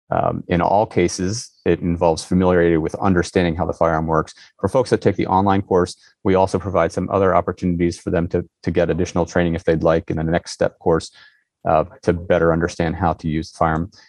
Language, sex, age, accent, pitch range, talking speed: English, male, 30-49, American, 85-95 Hz, 215 wpm